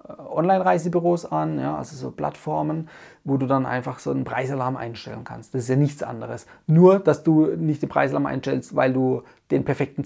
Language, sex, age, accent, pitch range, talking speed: German, male, 30-49, German, 135-175 Hz, 185 wpm